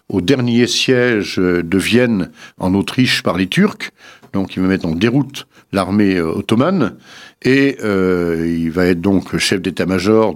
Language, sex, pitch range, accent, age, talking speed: French, male, 95-130 Hz, French, 60-79, 150 wpm